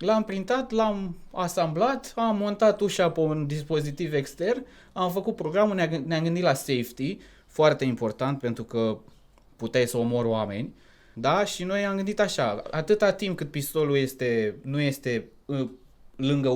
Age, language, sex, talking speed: 20-39, Romanian, male, 145 wpm